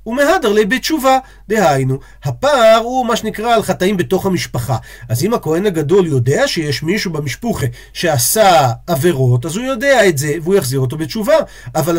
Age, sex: 40-59, male